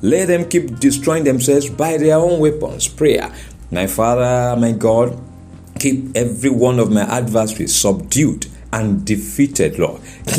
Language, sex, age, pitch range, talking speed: English, male, 60-79, 115-145 Hz, 140 wpm